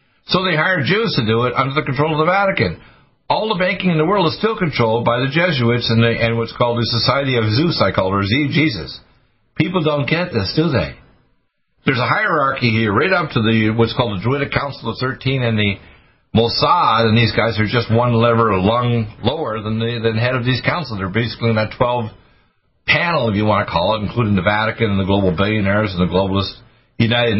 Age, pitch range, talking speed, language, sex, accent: 60-79, 110-145 Hz, 230 wpm, English, male, American